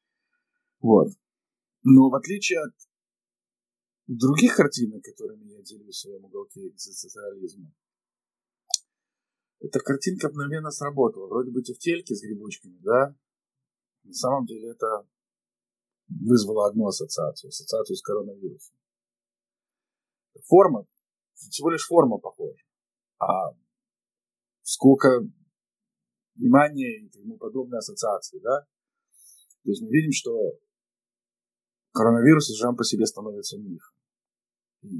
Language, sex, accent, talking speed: Russian, male, native, 100 wpm